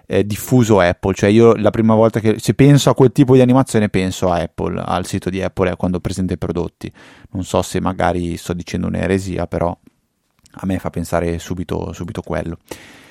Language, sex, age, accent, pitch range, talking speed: Italian, male, 30-49, native, 90-120 Hz, 195 wpm